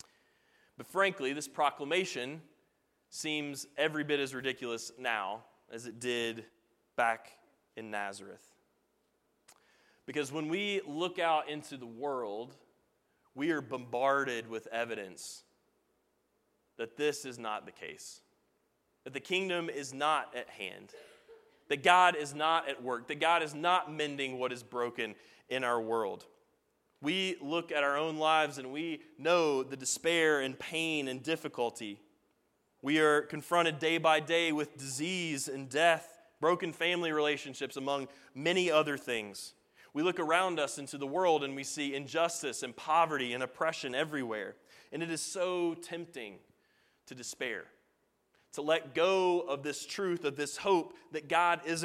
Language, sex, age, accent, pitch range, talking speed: English, male, 20-39, American, 135-165 Hz, 145 wpm